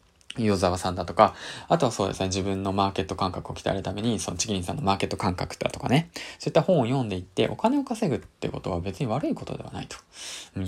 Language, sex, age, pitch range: Japanese, male, 20-39, 95-155 Hz